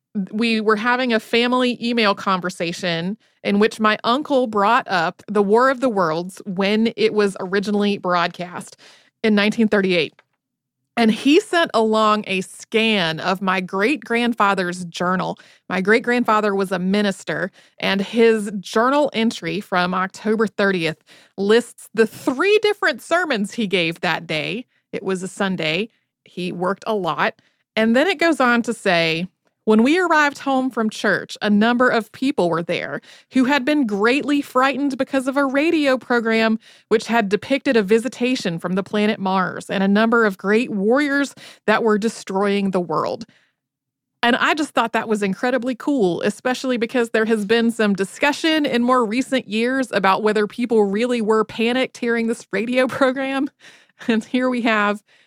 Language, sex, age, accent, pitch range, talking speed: English, female, 30-49, American, 195-250 Hz, 160 wpm